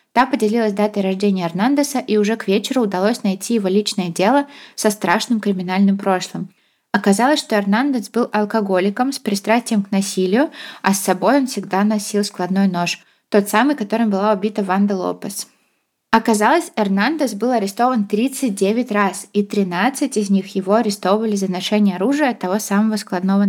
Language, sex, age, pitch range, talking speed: Russian, female, 20-39, 195-230 Hz, 155 wpm